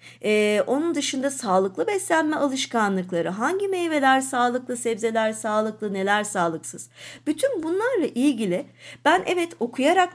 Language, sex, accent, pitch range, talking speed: Turkish, female, native, 190-275 Hz, 110 wpm